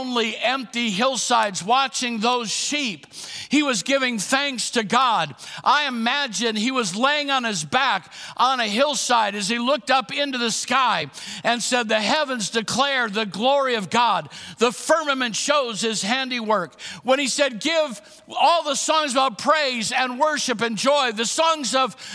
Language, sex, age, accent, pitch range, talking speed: English, male, 60-79, American, 160-265 Hz, 160 wpm